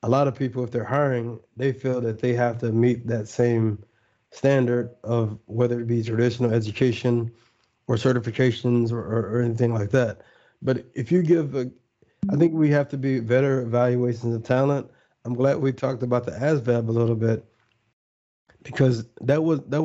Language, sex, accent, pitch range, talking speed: English, male, American, 115-130 Hz, 180 wpm